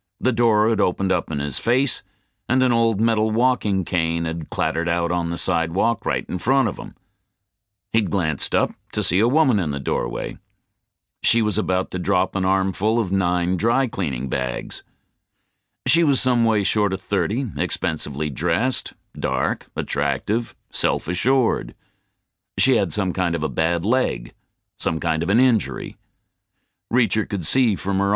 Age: 50-69